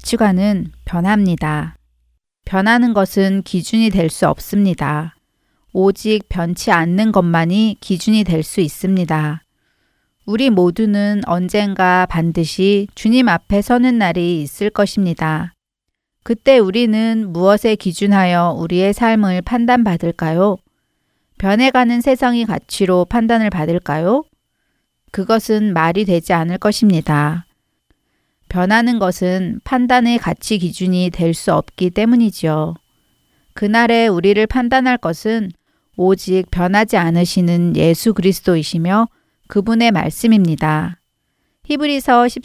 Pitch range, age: 175-220 Hz, 40-59